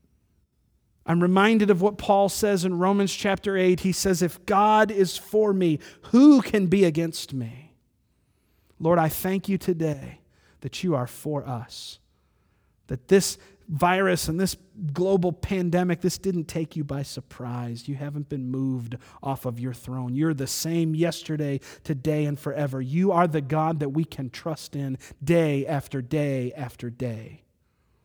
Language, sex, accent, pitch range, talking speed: English, male, American, 135-185 Hz, 160 wpm